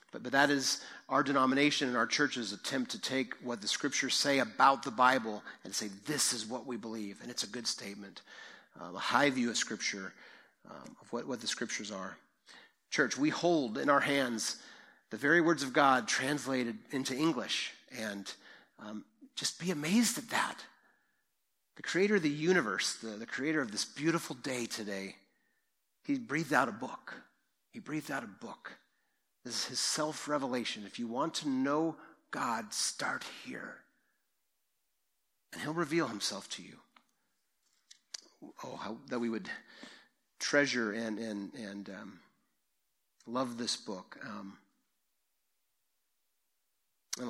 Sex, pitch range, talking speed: male, 110-145 Hz, 155 wpm